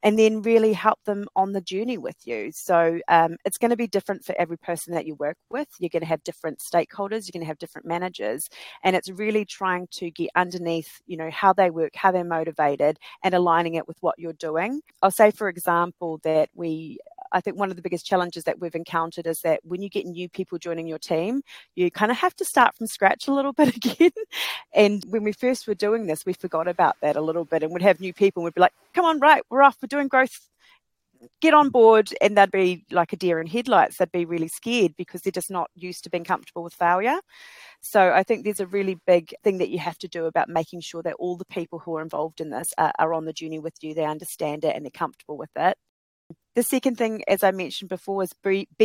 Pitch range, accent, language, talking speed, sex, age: 170-225 Hz, Australian, English, 240 wpm, female, 30-49